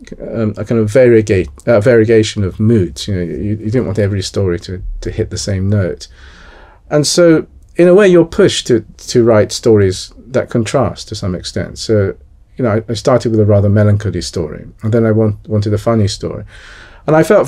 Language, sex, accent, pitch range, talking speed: English, male, British, 95-120 Hz, 210 wpm